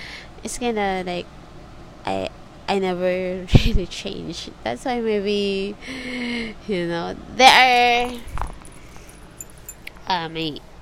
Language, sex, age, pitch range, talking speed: English, female, 20-39, 170-260 Hz, 85 wpm